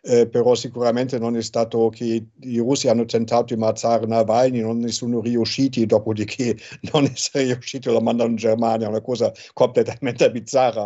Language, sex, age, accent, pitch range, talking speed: Italian, male, 60-79, German, 115-125 Hz, 165 wpm